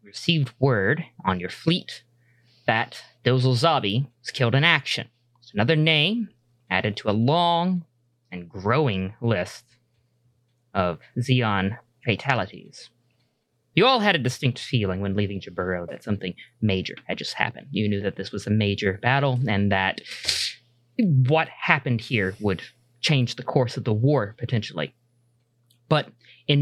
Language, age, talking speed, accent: English, 20-39, 140 wpm, American